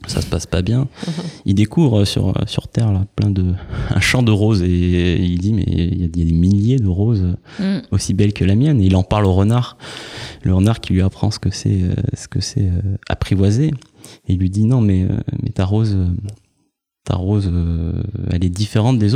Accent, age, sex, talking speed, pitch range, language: French, 30-49, male, 210 wpm, 90-110 Hz, French